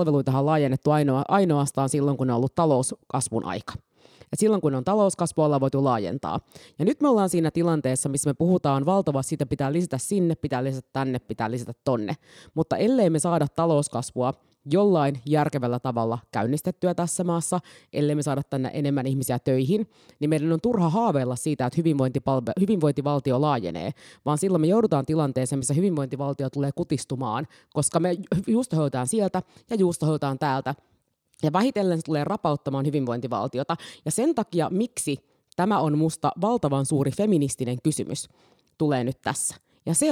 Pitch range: 135-175 Hz